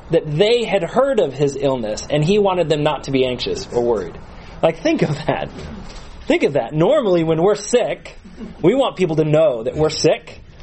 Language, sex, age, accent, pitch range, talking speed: English, male, 30-49, American, 135-170 Hz, 205 wpm